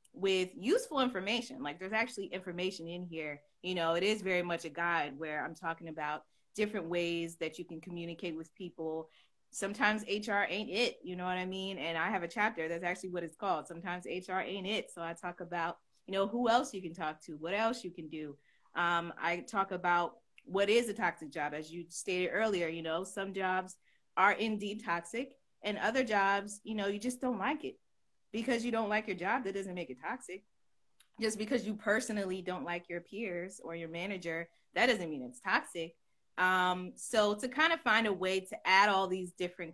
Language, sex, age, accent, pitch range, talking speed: English, female, 20-39, American, 170-210 Hz, 210 wpm